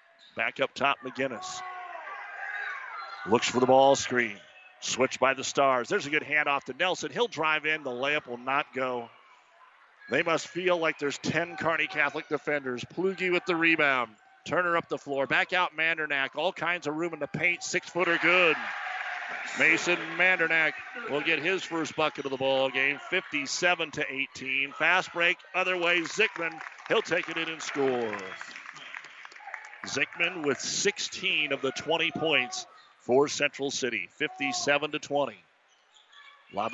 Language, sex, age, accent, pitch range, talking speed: English, male, 50-69, American, 135-170 Hz, 150 wpm